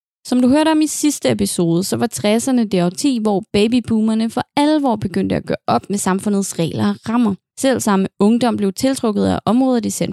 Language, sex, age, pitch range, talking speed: English, female, 20-39, 180-245 Hz, 200 wpm